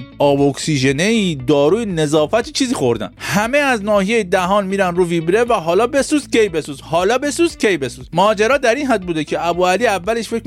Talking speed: 185 wpm